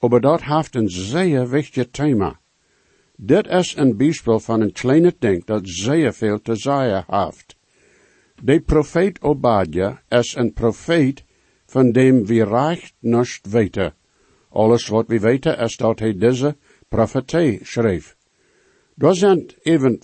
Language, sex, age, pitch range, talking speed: English, male, 60-79, 110-135 Hz, 135 wpm